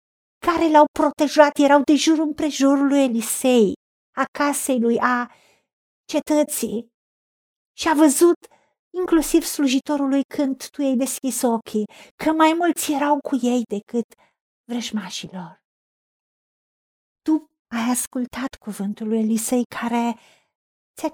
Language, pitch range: Romanian, 210-280 Hz